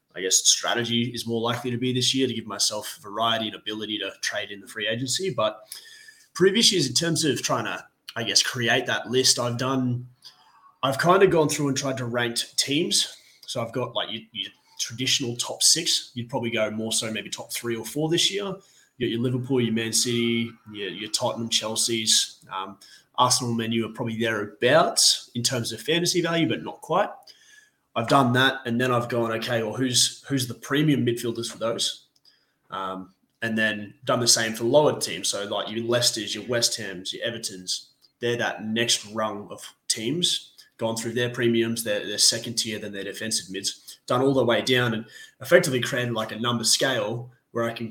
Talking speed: 200 wpm